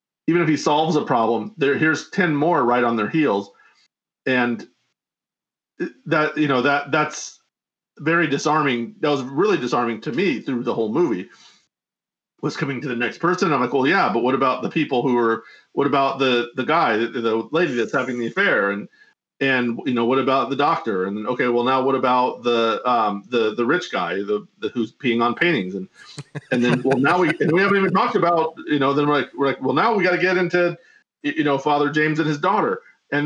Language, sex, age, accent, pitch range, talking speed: English, male, 40-59, American, 125-170 Hz, 215 wpm